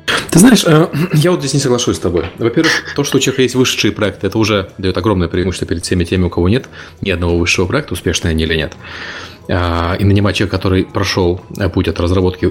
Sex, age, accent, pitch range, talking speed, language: male, 30-49, native, 90-110 Hz, 210 wpm, Russian